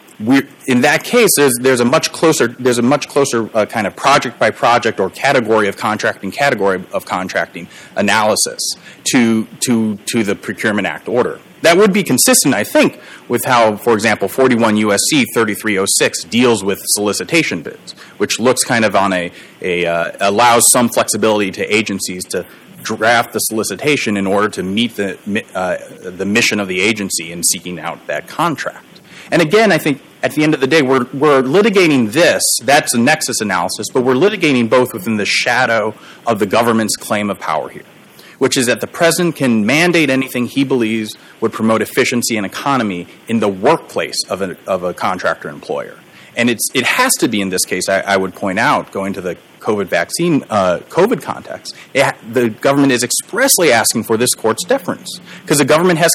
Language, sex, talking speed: English, male, 190 wpm